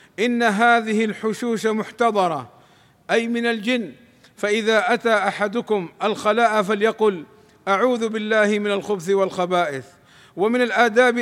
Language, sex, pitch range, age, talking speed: Arabic, male, 210-230 Hz, 50-69, 100 wpm